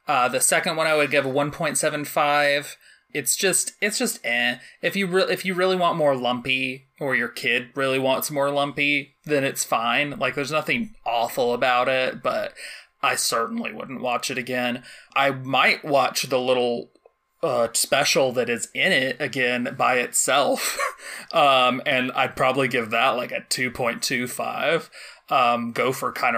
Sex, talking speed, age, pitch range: male, 160 wpm, 20-39, 125-155 Hz